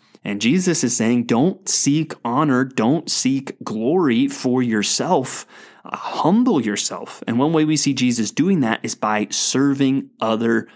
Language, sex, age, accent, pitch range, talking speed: English, male, 20-39, American, 120-165 Hz, 150 wpm